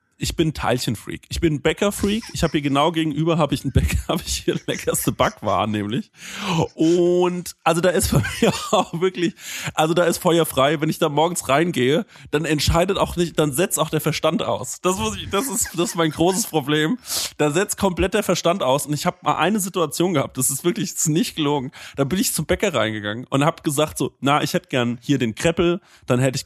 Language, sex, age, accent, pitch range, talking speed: German, male, 30-49, German, 135-175 Hz, 220 wpm